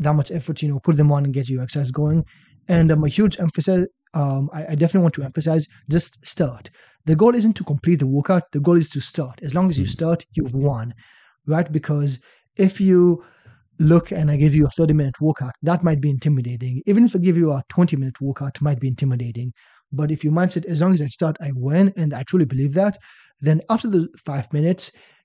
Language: English